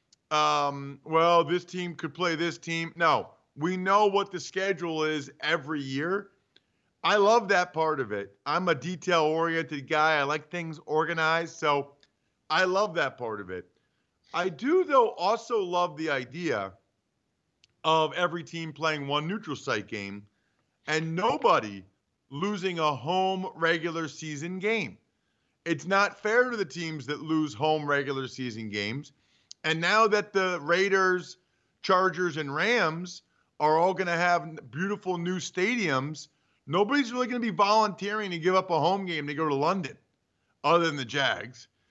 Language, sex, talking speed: English, male, 155 wpm